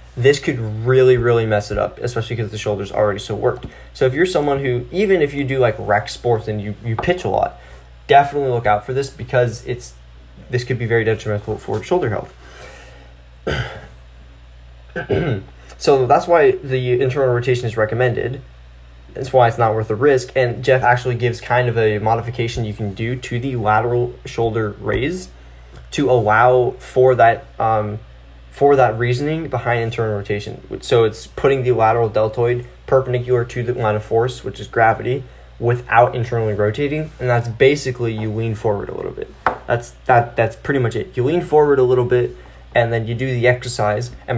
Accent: American